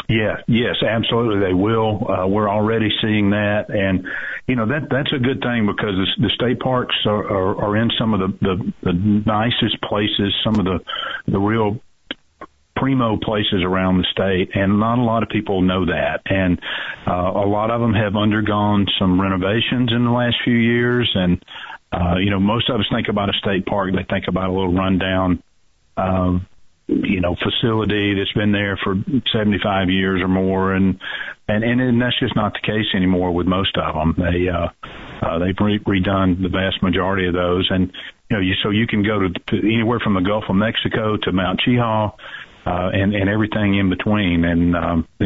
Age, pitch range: 50-69, 95-110 Hz